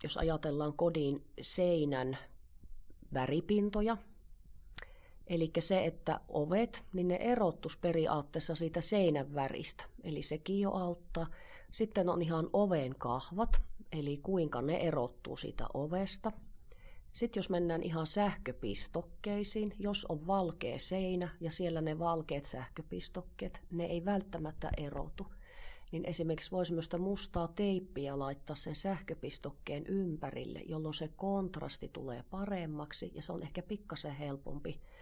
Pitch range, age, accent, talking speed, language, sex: 150-190 Hz, 30-49, native, 120 wpm, Finnish, female